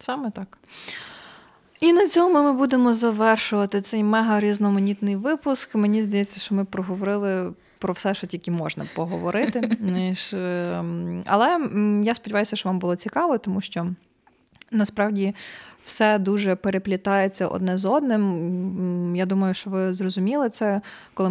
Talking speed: 125 wpm